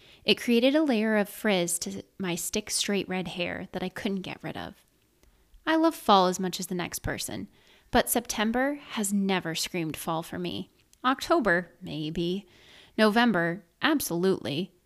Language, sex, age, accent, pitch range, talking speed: English, female, 20-39, American, 180-235 Hz, 155 wpm